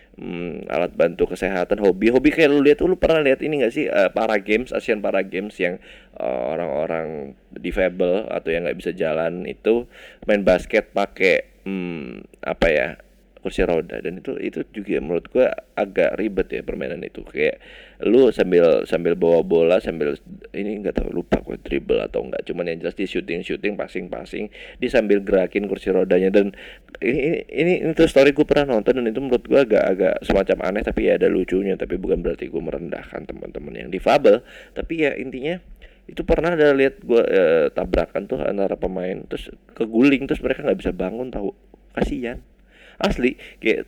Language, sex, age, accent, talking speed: Indonesian, male, 20-39, native, 180 wpm